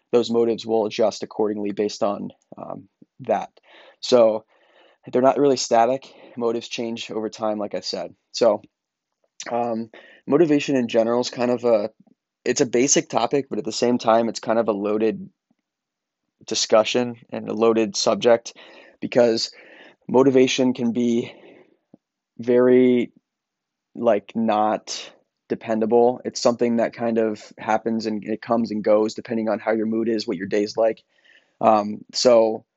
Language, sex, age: English, male, 20-39